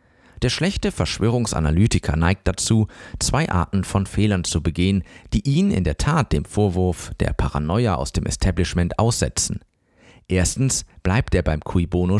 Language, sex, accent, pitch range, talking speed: German, male, German, 85-115 Hz, 150 wpm